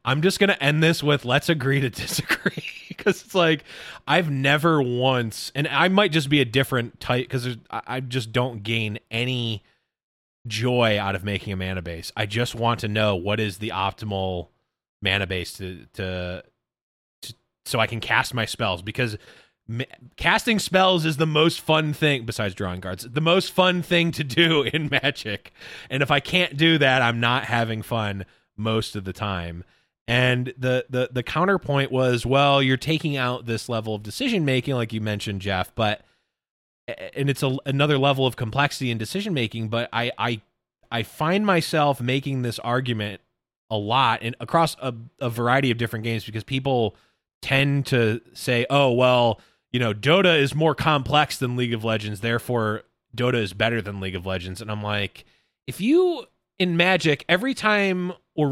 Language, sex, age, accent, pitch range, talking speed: English, male, 20-39, American, 110-145 Hz, 180 wpm